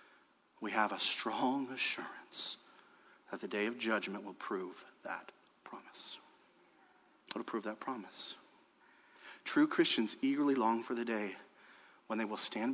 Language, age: English, 40-59